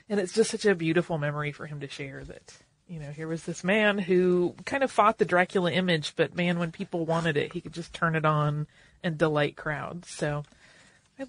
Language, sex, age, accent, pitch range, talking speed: English, female, 30-49, American, 170-215 Hz, 225 wpm